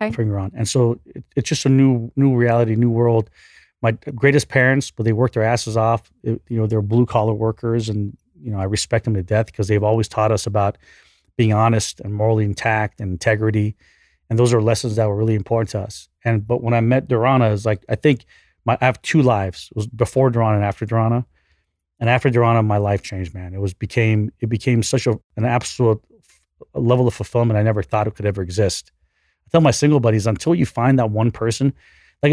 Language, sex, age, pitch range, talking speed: English, male, 30-49, 105-125 Hz, 220 wpm